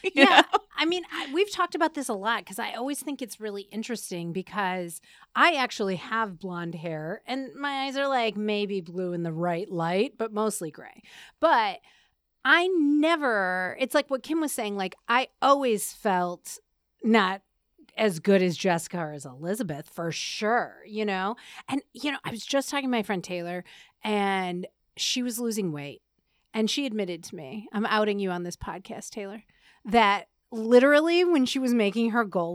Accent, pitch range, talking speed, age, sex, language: American, 190-280 Hz, 180 wpm, 30-49, female, English